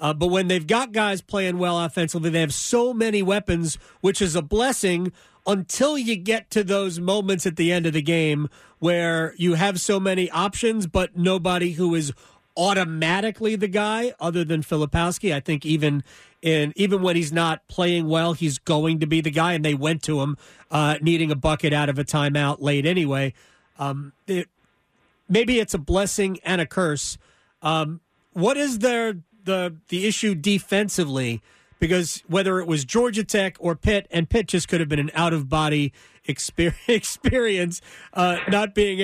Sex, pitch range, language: male, 160-200 Hz, English